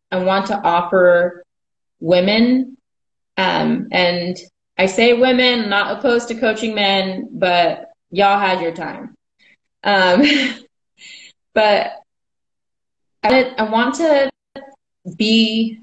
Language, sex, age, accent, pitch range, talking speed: English, female, 20-39, American, 170-220 Hz, 100 wpm